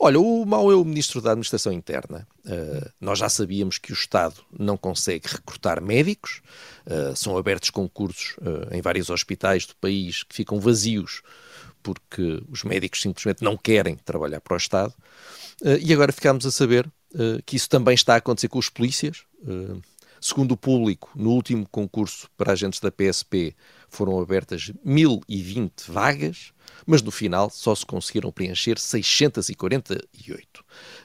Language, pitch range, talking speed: Portuguese, 100-140 Hz, 160 wpm